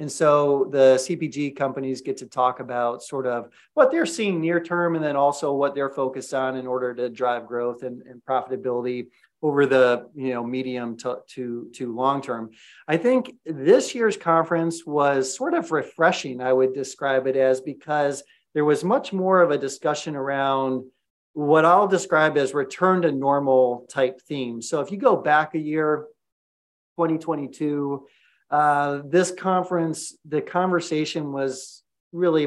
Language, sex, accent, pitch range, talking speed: English, male, American, 130-160 Hz, 155 wpm